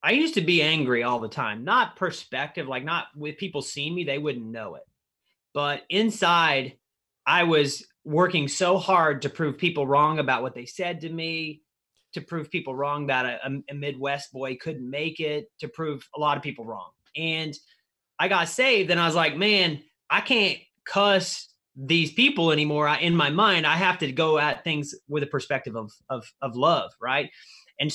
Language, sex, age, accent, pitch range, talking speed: English, male, 30-49, American, 140-175 Hz, 195 wpm